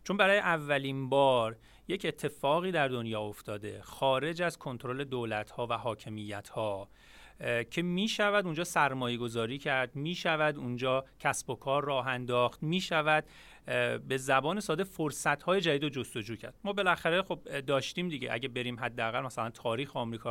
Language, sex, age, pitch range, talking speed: Persian, male, 40-59, 125-175 Hz, 140 wpm